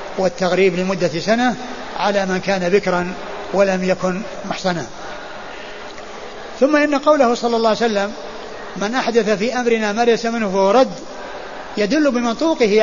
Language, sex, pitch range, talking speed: Arabic, male, 205-245 Hz, 130 wpm